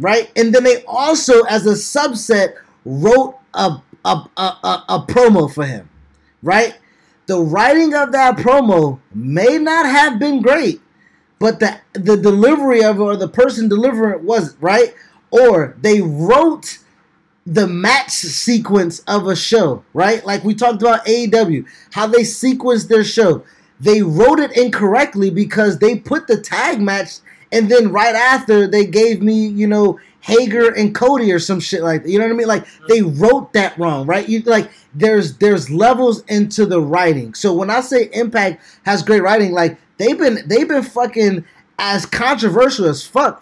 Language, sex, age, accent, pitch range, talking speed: English, male, 20-39, American, 195-245 Hz, 170 wpm